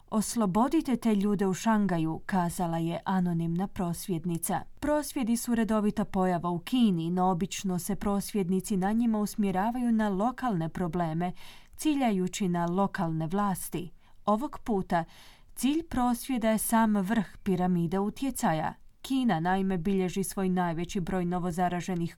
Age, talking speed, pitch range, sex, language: 20-39, 120 wpm, 180-230 Hz, female, Croatian